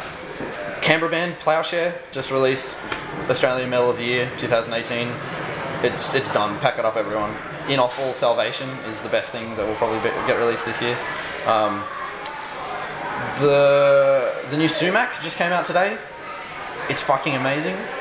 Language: English